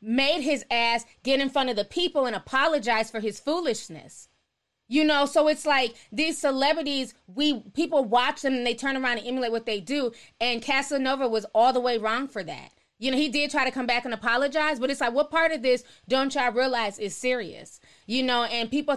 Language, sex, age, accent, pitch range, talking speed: English, female, 20-39, American, 245-300 Hz, 220 wpm